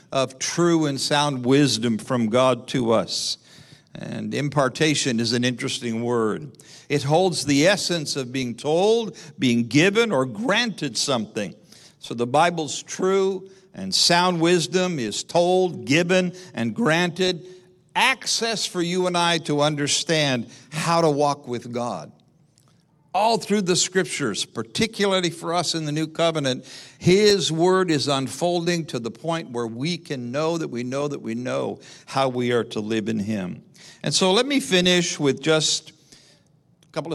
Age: 60-79